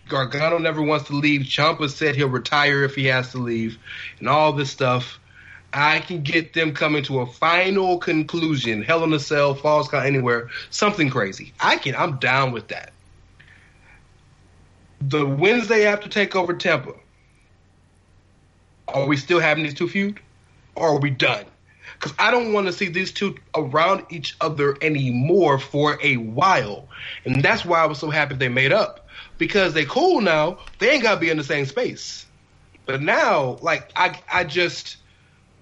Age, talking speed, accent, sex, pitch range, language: 30-49, 170 wpm, American, male, 130-180 Hz, English